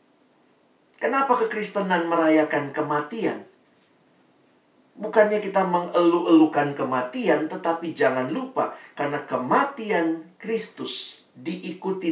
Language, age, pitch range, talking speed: Indonesian, 50-69, 160-255 Hz, 80 wpm